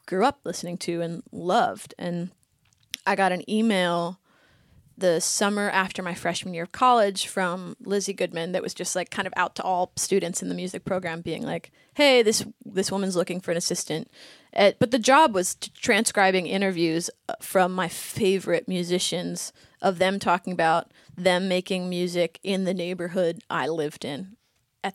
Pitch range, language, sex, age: 175-215 Hz, English, female, 20-39